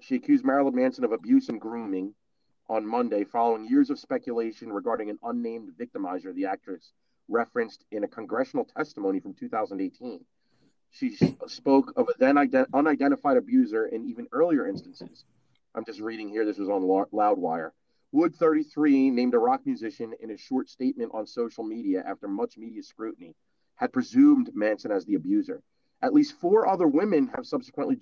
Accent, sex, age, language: American, male, 30-49, English